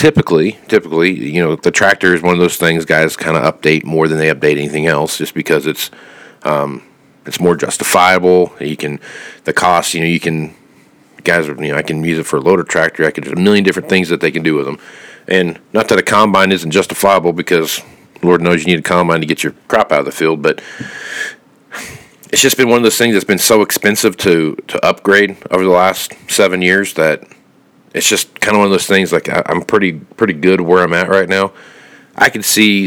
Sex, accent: male, American